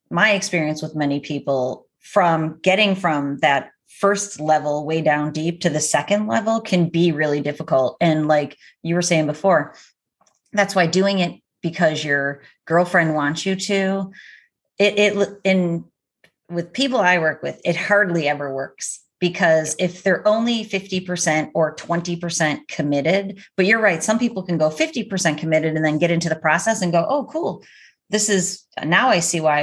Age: 30-49